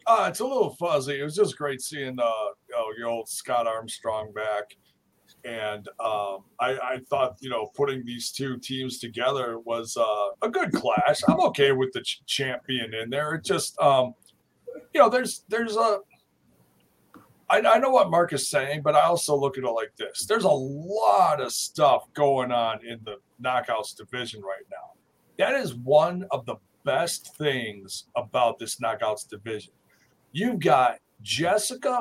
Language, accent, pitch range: English, American, 115-145 Hz